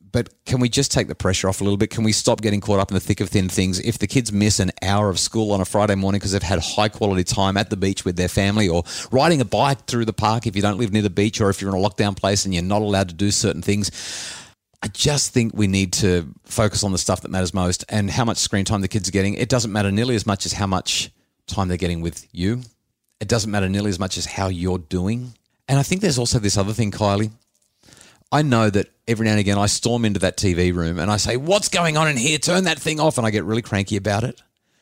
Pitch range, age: 95-110 Hz, 30-49